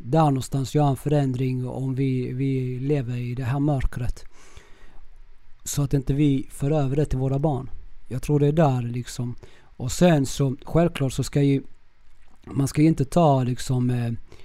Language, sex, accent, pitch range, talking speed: Swedish, male, native, 125-145 Hz, 180 wpm